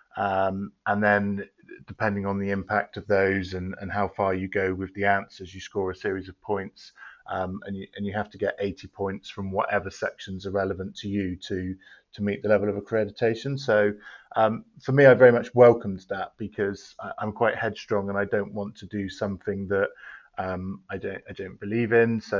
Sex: male